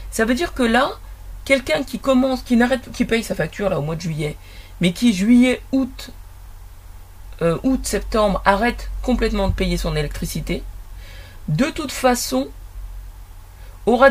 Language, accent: French, French